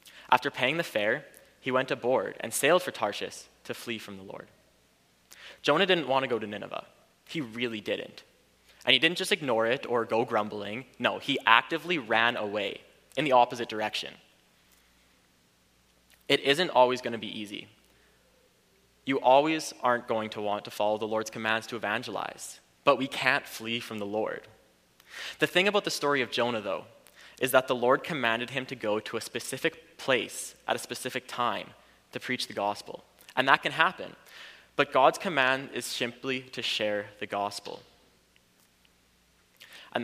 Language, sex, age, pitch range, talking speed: English, male, 20-39, 105-135 Hz, 170 wpm